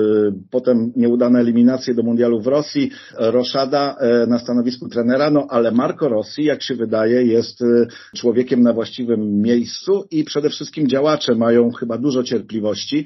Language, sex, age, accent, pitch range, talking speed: Polish, male, 50-69, native, 115-130 Hz, 140 wpm